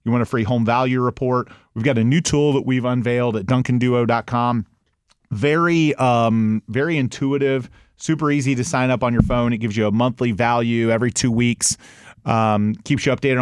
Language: English